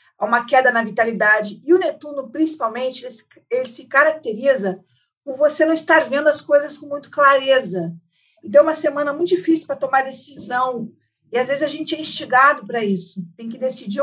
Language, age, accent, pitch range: Portuguese, 50-69, Brazilian, 215-285 Hz